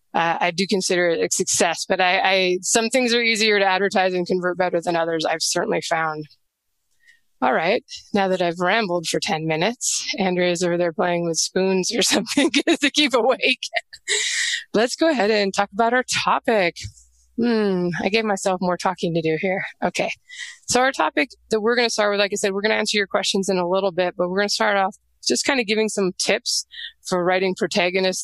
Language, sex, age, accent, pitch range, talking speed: English, female, 20-39, American, 180-220 Hz, 210 wpm